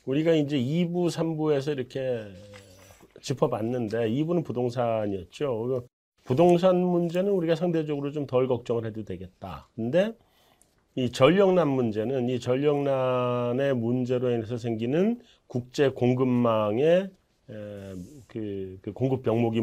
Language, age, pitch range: Korean, 40-59, 110-150 Hz